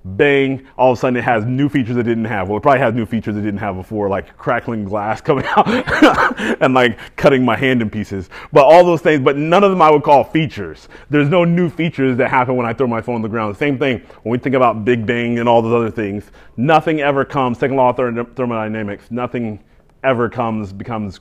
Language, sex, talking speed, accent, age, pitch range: English, male, 240 wpm, American, 30-49, 105-125 Hz